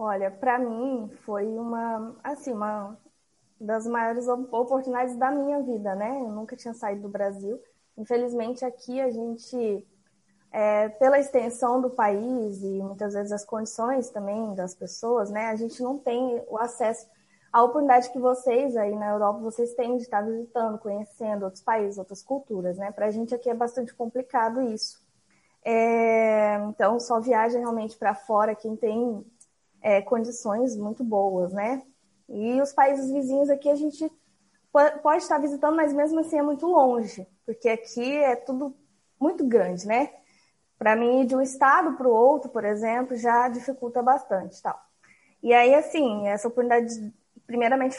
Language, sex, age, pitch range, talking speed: Portuguese, female, 20-39, 215-260 Hz, 155 wpm